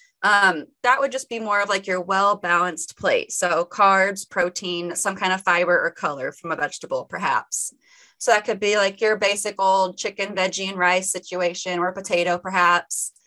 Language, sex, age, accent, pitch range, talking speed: English, female, 20-39, American, 175-220 Hz, 180 wpm